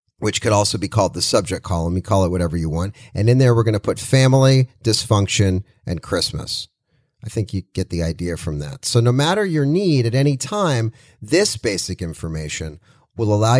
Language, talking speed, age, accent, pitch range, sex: English, 205 wpm, 40-59, American, 105-140 Hz, male